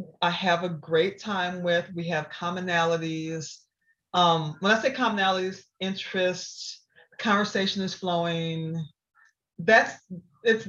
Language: English